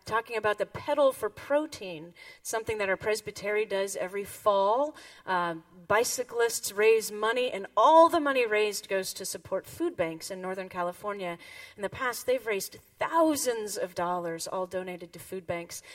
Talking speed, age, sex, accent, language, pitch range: 160 wpm, 30-49, female, American, English, 185-260 Hz